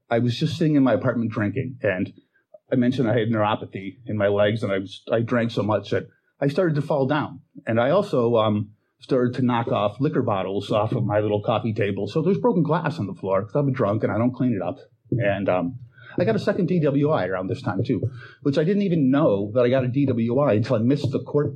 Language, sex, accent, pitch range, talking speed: English, male, American, 110-135 Hz, 240 wpm